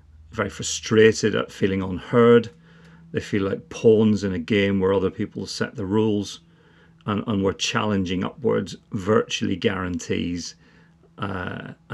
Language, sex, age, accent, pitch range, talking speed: English, male, 40-59, British, 90-105 Hz, 130 wpm